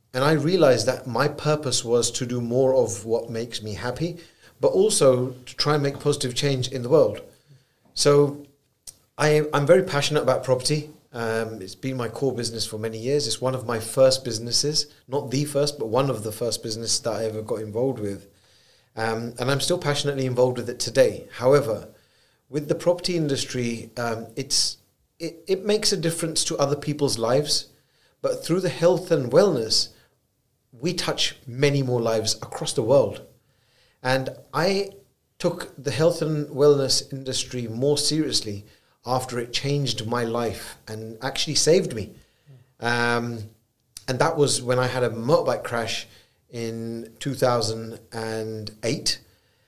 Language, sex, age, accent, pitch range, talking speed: English, male, 40-59, British, 115-145 Hz, 160 wpm